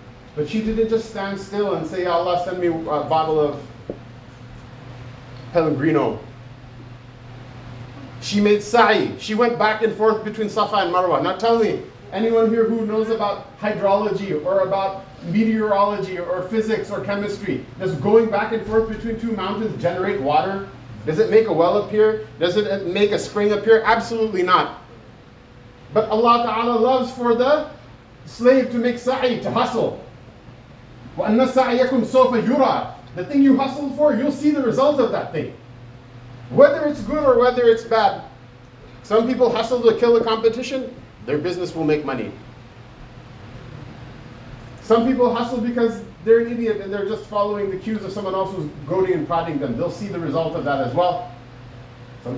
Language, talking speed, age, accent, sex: English, 165 wpm, 30-49, American, male